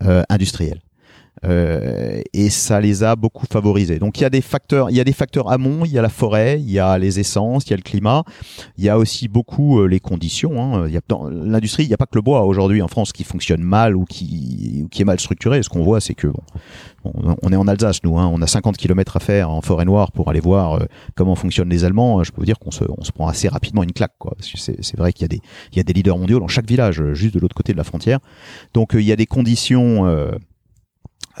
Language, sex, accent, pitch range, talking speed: French, male, French, 90-115 Hz, 275 wpm